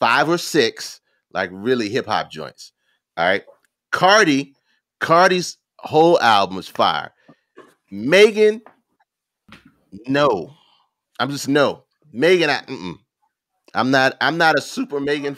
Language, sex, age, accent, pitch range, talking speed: English, male, 30-49, American, 130-215 Hz, 120 wpm